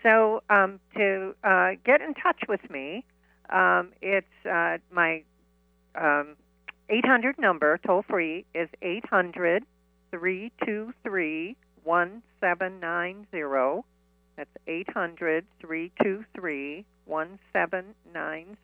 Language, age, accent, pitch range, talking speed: English, 50-69, American, 155-215 Hz, 65 wpm